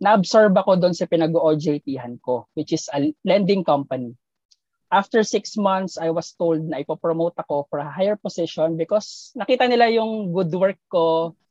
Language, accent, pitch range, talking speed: Filipino, native, 155-190 Hz, 165 wpm